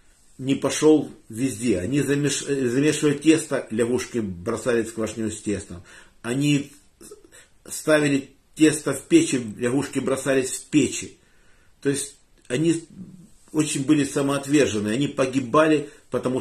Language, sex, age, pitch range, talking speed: Russian, male, 50-69, 110-155 Hz, 115 wpm